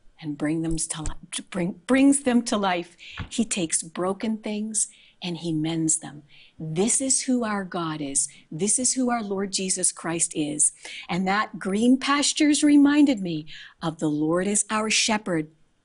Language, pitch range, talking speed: English, 170-245 Hz, 150 wpm